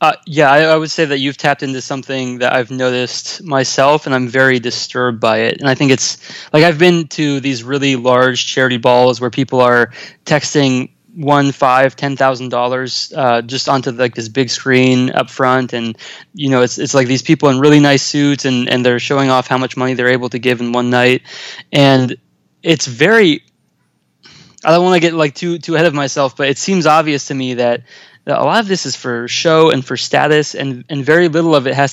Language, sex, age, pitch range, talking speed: English, male, 20-39, 125-155 Hz, 220 wpm